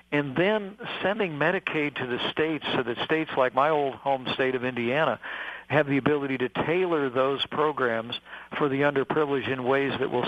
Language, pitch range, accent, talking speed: English, 125-150 Hz, American, 180 wpm